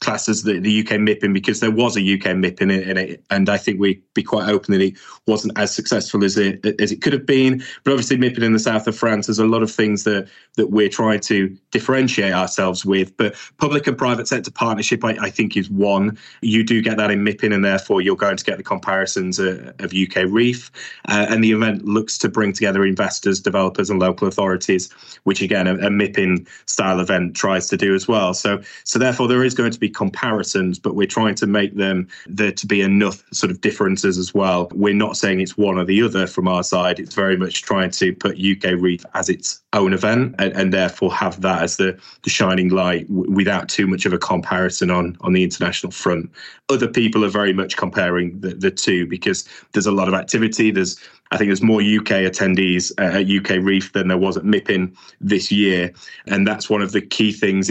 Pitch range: 95-110 Hz